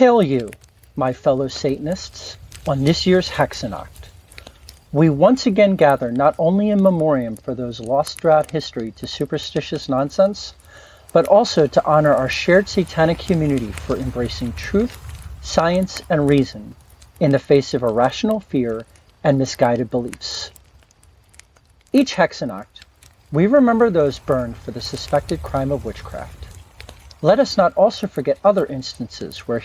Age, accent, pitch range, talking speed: 50-69, American, 120-170 Hz, 140 wpm